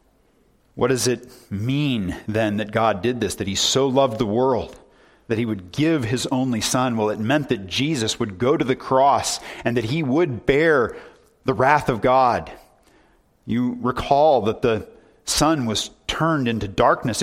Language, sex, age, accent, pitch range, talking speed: English, male, 40-59, American, 115-140 Hz, 175 wpm